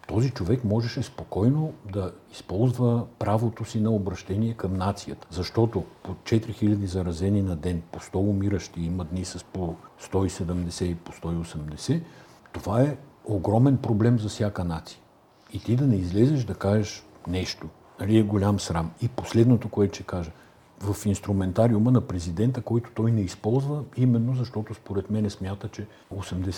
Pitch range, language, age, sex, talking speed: 85-110 Hz, Bulgarian, 60-79, male, 155 wpm